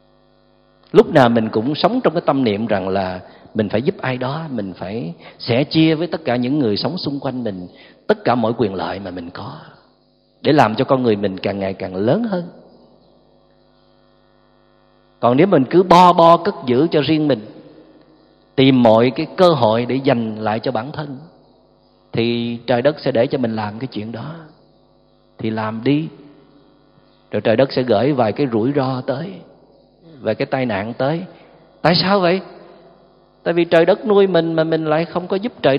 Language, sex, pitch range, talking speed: Vietnamese, male, 115-165 Hz, 195 wpm